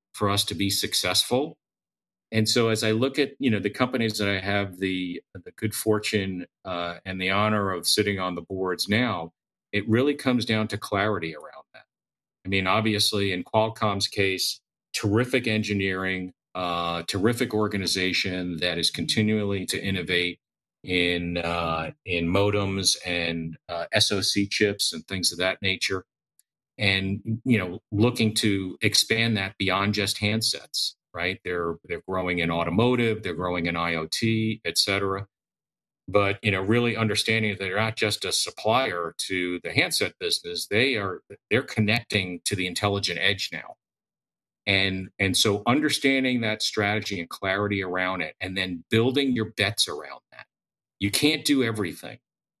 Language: English